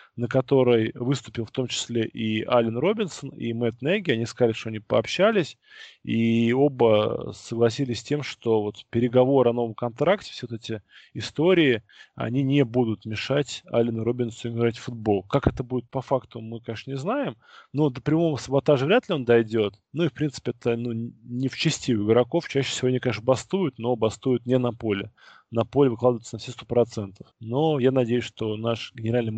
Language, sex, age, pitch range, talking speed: Russian, male, 20-39, 115-135 Hz, 180 wpm